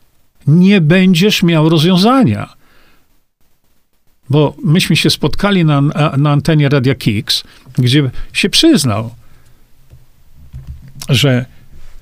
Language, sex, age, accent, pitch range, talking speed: Polish, male, 50-69, native, 130-185 Hz, 85 wpm